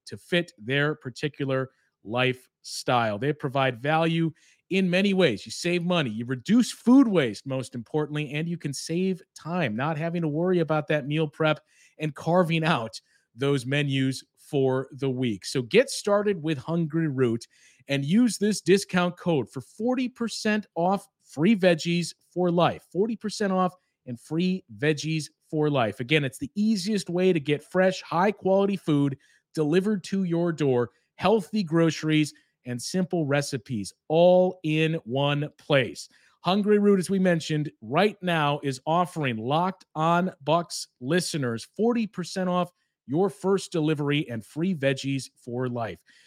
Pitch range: 135-185 Hz